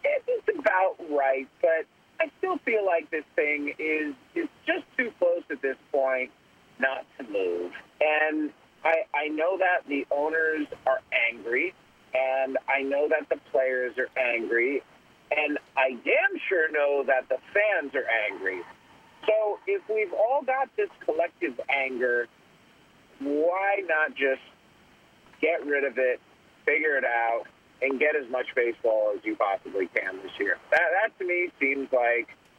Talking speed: 155 wpm